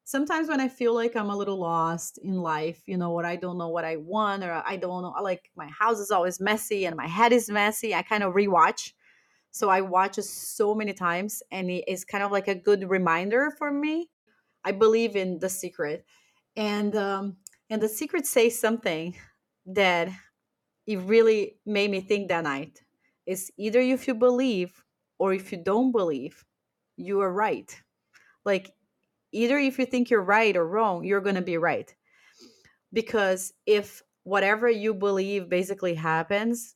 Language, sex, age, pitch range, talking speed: English, female, 30-49, 185-220 Hz, 180 wpm